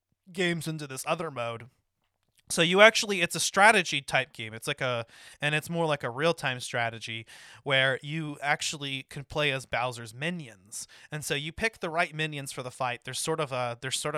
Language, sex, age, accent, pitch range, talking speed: English, male, 30-49, American, 120-150 Hz, 200 wpm